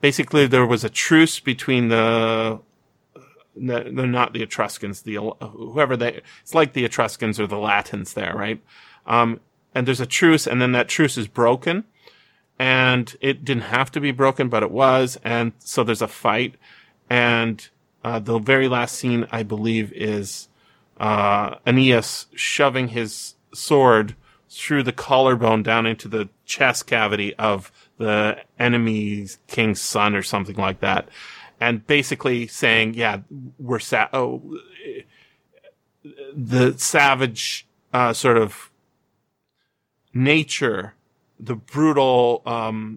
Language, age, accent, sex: English, 30-49, American, male